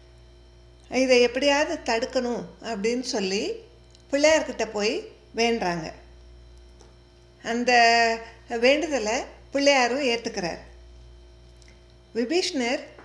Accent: native